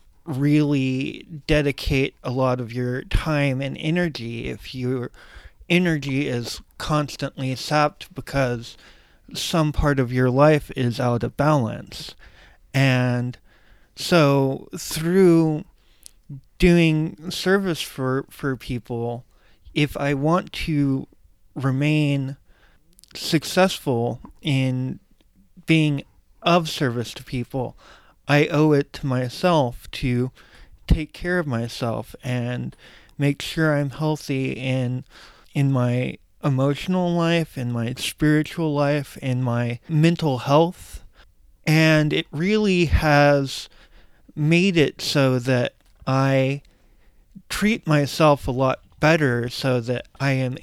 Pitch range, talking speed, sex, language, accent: 125-155 Hz, 110 wpm, male, English, American